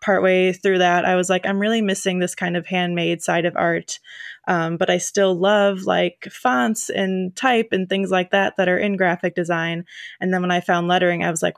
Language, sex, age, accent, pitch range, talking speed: English, female, 20-39, American, 170-190 Hz, 225 wpm